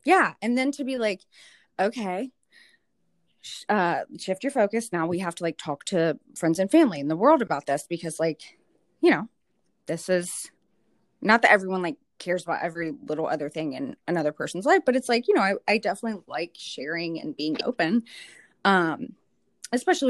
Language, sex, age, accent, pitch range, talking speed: English, female, 20-39, American, 170-240 Hz, 180 wpm